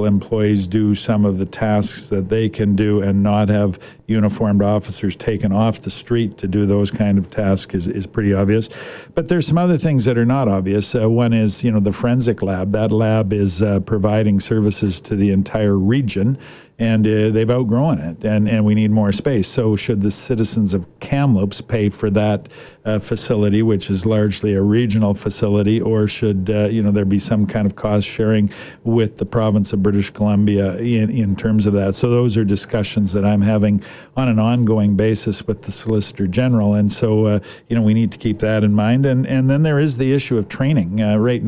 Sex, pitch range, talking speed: male, 105-115 Hz, 210 wpm